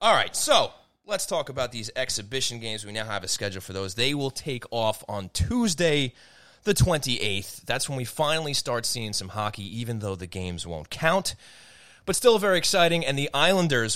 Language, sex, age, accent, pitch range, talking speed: English, male, 30-49, American, 100-140 Hz, 195 wpm